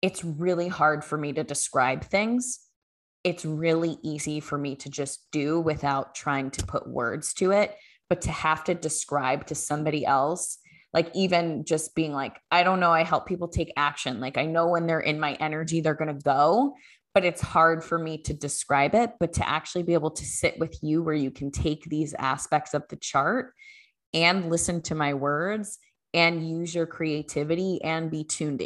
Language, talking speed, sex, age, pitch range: English, 195 wpm, female, 20-39, 150-170 Hz